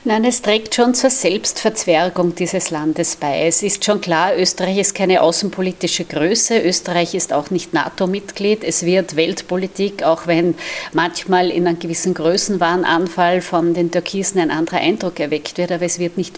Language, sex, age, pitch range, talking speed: German, female, 50-69, 170-195 Hz, 165 wpm